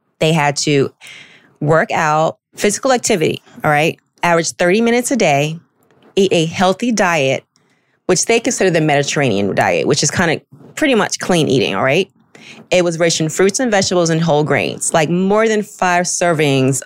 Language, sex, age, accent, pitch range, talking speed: English, female, 30-49, American, 150-200 Hz, 175 wpm